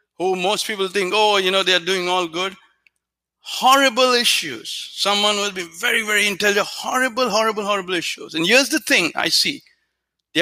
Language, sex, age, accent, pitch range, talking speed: English, male, 60-79, Indian, 195-255 Hz, 185 wpm